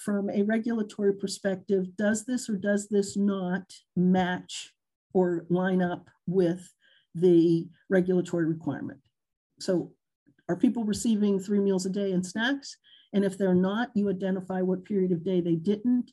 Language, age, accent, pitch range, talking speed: English, 50-69, American, 175-205 Hz, 150 wpm